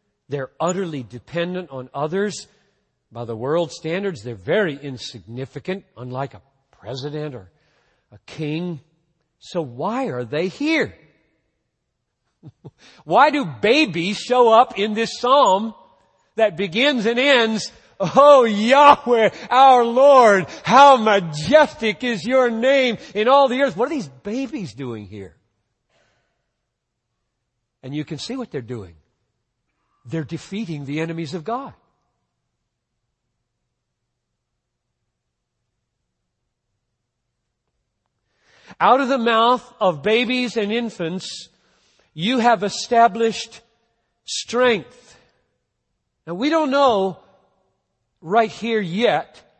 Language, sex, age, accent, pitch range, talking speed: English, male, 50-69, American, 150-240 Hz, 105 wpm